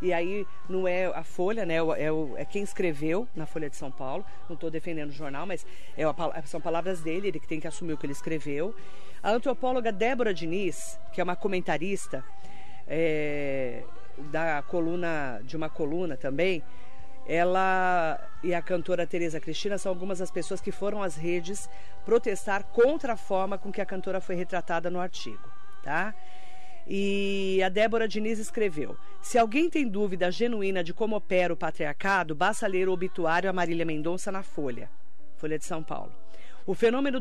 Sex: female